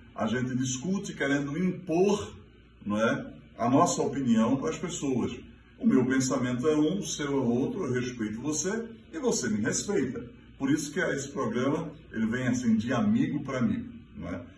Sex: male